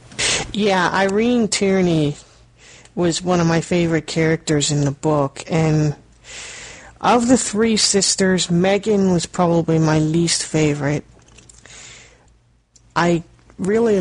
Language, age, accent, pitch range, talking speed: English, 40-59, American, 155-175 Hz, 105 wpm